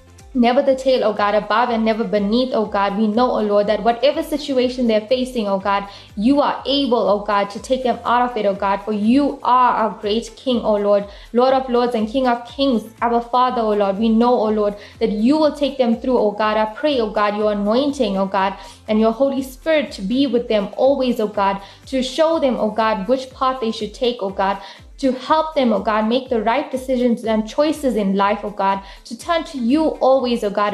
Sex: female